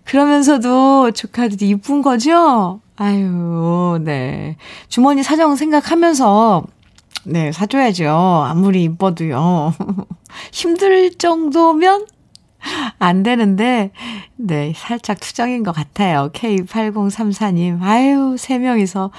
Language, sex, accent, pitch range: Korean, female, native, 180-275 Hz